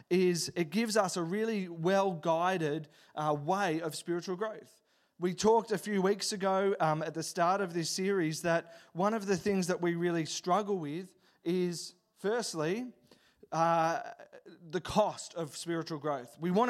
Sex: male